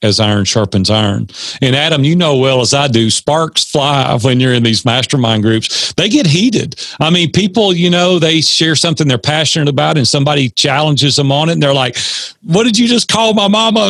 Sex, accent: male, American